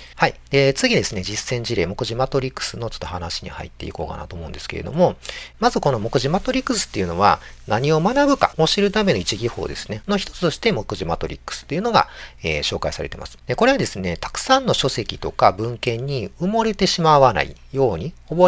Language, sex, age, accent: Japanese, male, 40-59, native